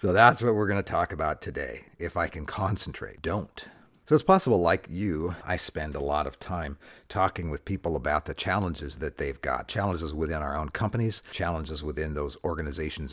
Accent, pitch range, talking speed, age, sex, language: American, 75-100 Hz, 195 wpm, 50-69, male, English